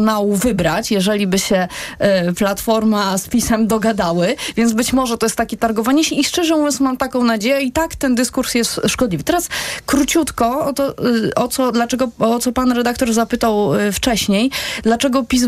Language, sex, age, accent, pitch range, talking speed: Polish, female, 30-49, native, 225-275 Hz, 170 wpm